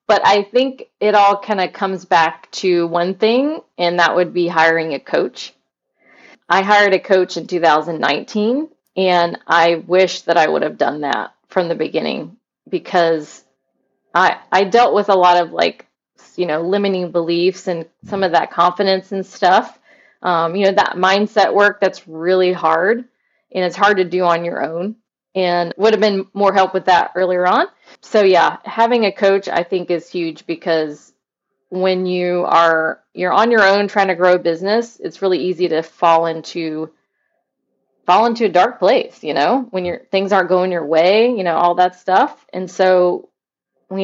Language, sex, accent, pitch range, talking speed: English, female, American, 170-200 Hz, 185 wpm